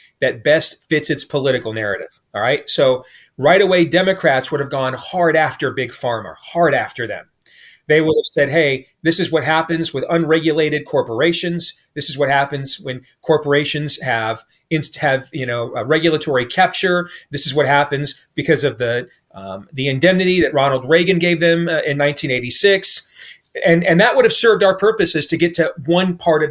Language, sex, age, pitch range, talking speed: English, male, 40-59, 140-170 Hz, 180 wpm